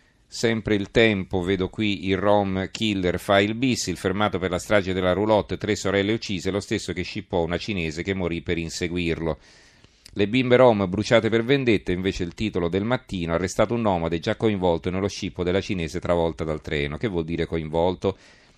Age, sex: 40-59, male